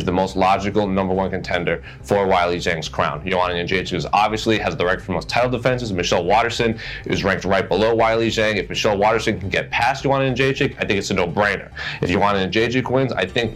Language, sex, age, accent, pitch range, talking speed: English, male, 30-49, American, 95-120 Hz, 210 wpm